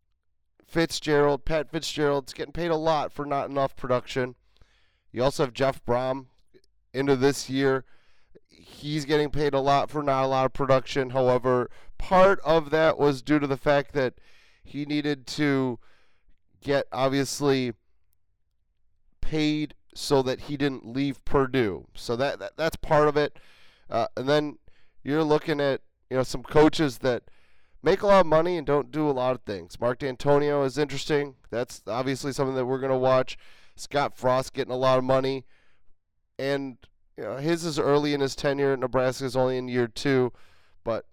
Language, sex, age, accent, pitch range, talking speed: English, male, 30-49, American, 125-145 Hz, 170 wpm